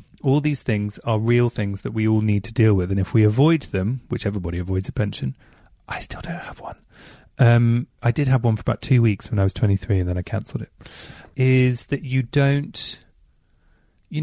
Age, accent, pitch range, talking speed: 30-49, British, 105-125 Hz, 215 wpm